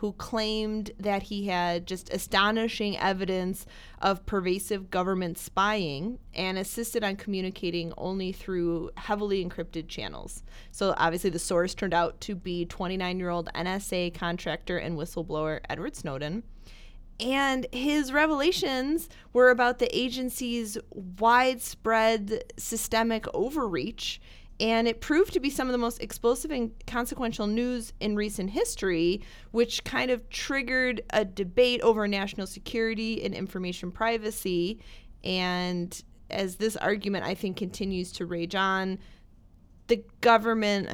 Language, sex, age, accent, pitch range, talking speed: English, female, 30-49, American, 180-230 Hz, 125 wpm